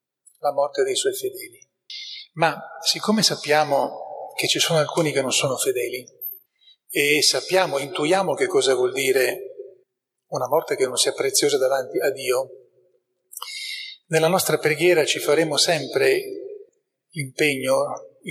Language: Italian